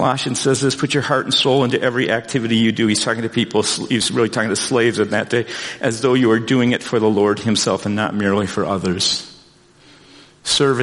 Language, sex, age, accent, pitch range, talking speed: English, male, 50-69, American, 110-140 Hz, 225 wpm